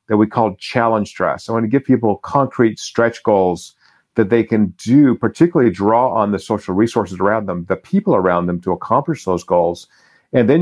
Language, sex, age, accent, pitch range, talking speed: English, male, 50-69, American, 105-130 Hz, 200 wpm